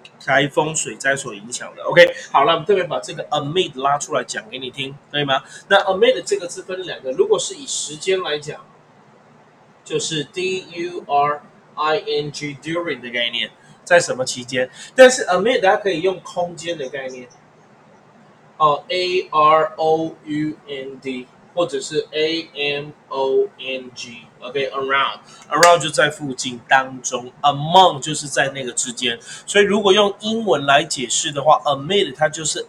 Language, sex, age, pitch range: Chinese, male, 20-39, 140-185 Hz